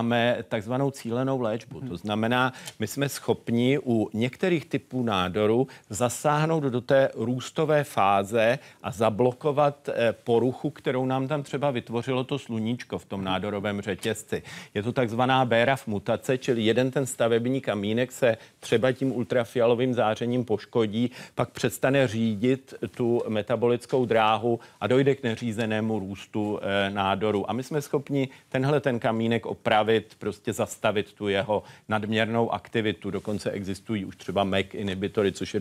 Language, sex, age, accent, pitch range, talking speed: Czech, male, 40-59, native, 110-130 Hz, 135 wpm